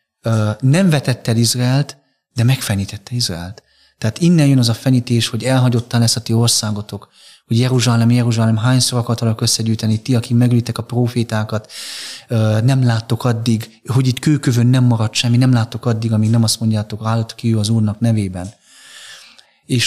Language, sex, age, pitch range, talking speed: Hungarian, male, 30-49, 110-135 Hz, 160 wpm